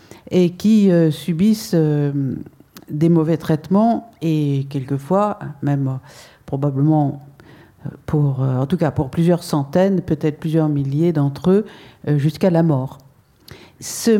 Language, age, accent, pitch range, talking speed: French, 50-69, French, 150-190 Hz, 130 wpm